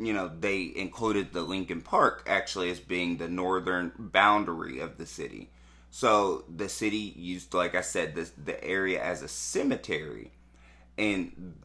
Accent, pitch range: American, 75-105 Hz